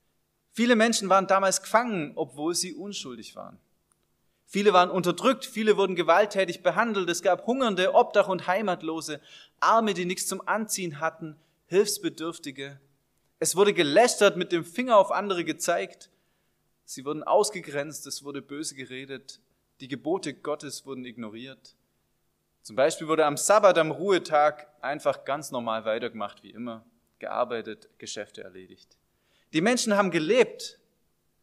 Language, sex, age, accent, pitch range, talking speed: German, male, 20-39, German, 140-195 Hz, 135 wpm